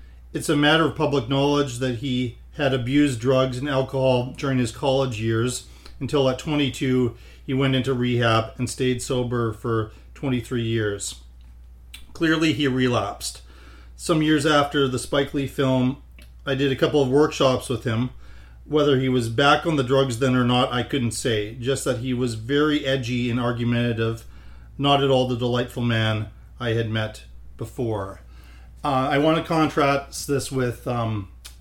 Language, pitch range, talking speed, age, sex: English, 115-135 Hz, 165 wpm, 40-59, male